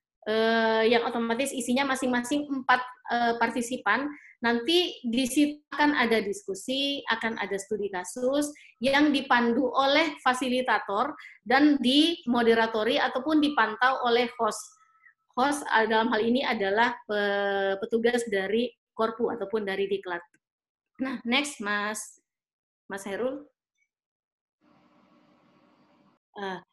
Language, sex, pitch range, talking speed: Indonesian, female, 225-275 Hz, 100 wpm